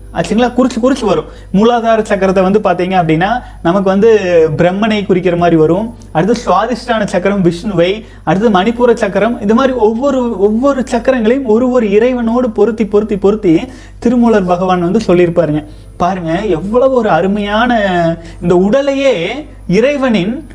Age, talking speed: 30-49, 130 wpm